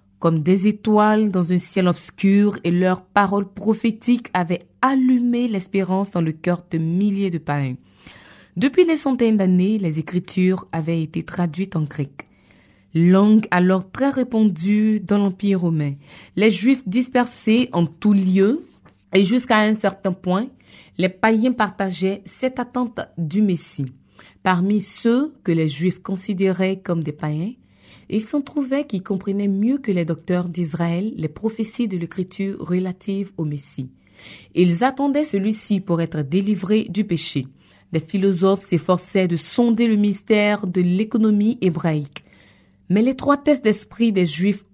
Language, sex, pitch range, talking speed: French, female, 175-220 Hz, 140 wpm